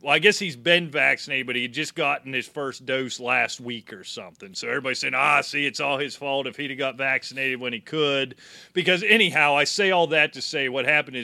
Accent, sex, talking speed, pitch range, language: American, male, 240 wpm, 120-145 Hz, English